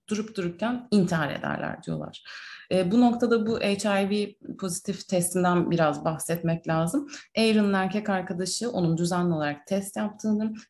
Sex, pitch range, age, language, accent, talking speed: female, 175-230 Hz, 30-49, Turkish, native, 130 wpm